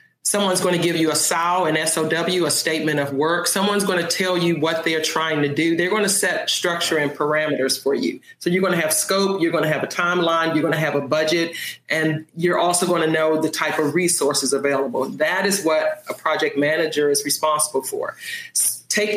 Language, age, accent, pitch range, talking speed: English, 40-59, American, 155-185 Hz, 220 wpm